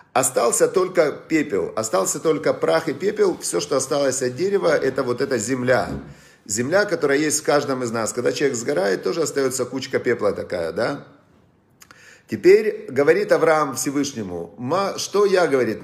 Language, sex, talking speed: Russian, male, 150 wpm